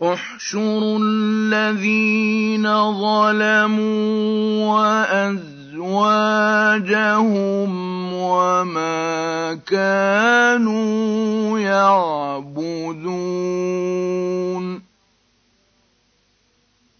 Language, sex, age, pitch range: Arabic, male, 50-69, 195-245 Hz